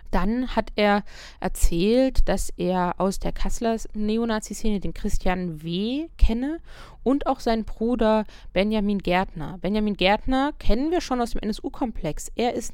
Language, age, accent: German, 20-39, German